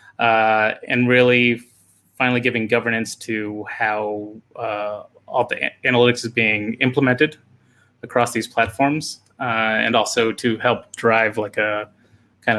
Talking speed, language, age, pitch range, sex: 130 wpm, English, 20-39, 105-120 Hz, male